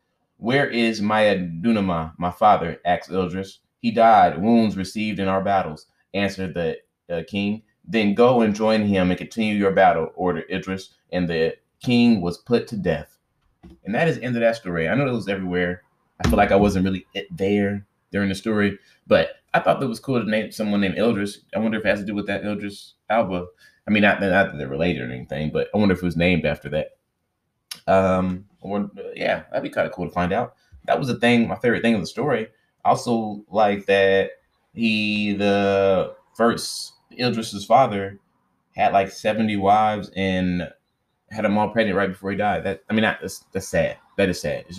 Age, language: 20-39, English